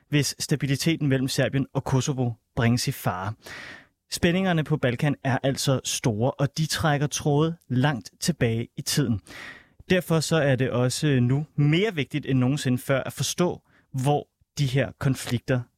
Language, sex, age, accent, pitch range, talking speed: Danish, male, 30-49, native, 125-150 Hz, 150 wpm